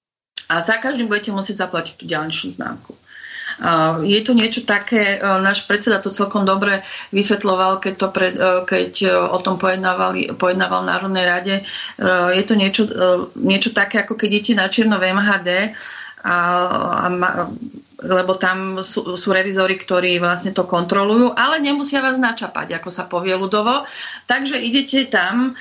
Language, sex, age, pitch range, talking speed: Slovak, female, 40-59, 180-210 Hz, 150 wpm